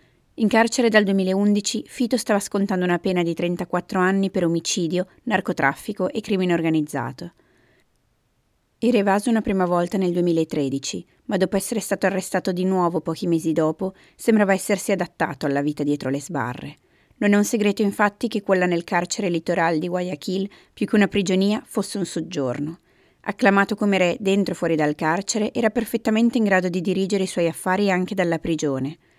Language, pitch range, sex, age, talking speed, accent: Italian, 170-205 Hz, female, 30-49, 170 wpm, native